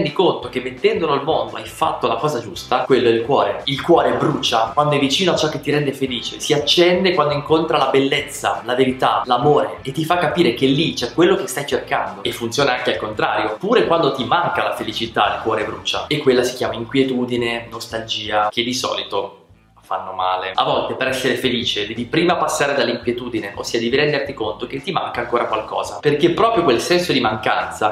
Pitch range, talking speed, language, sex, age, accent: 115-150 Hz, 205 wpm, Italian, male, 20-39, native